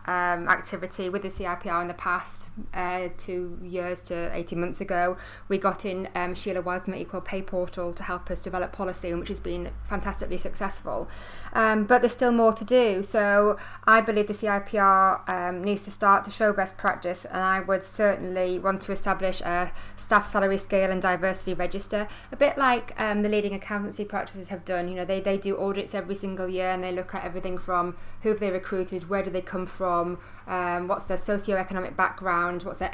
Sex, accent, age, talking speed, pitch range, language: female, British, 20-39, 200 wpm, 180-200 Hz, English